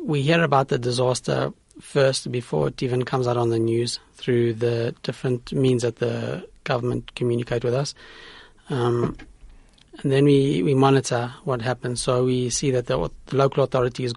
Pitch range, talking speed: 120-135 Hz, 170 wpm